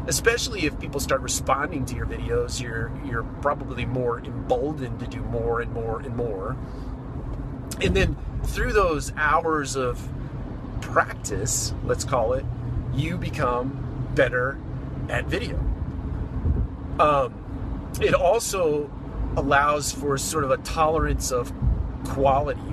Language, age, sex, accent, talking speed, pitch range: English, 30-49, male, American, 120 wpm, 120-140 Hz